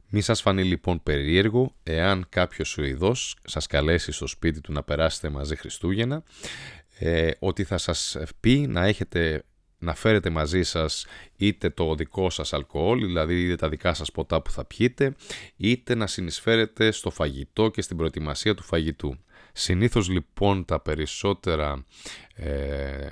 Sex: male